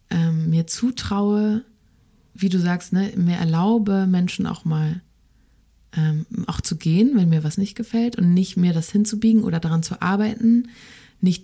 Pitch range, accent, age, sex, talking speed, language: 165-200 Hz, German, 30-49, female, 165 wpm, German